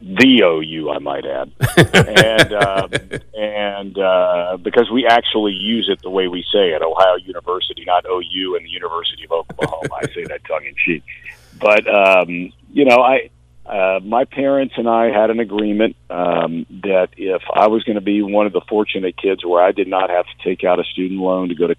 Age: 50-69